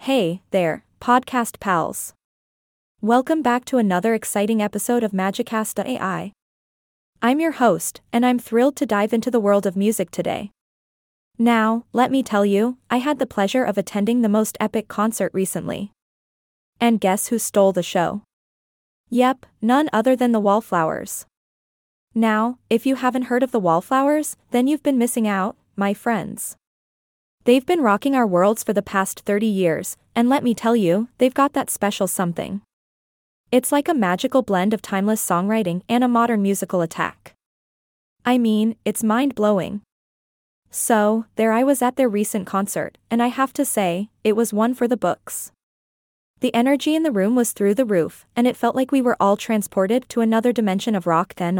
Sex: female